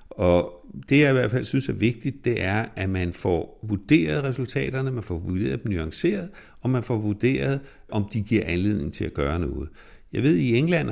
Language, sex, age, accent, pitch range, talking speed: Danish, male, 60-79, native, 95-135 Hz, 210 wpm